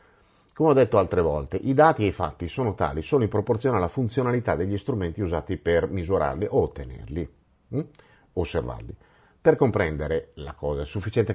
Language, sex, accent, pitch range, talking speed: Italian, male, native, 85-130 Hz, 170 wpm